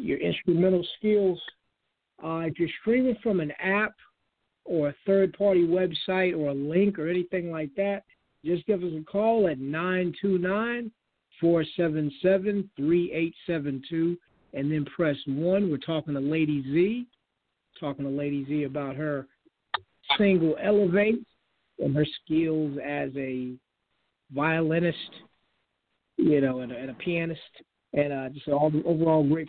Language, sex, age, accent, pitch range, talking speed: English, male, 50-69, American, 145-180 Hz, 130 wpm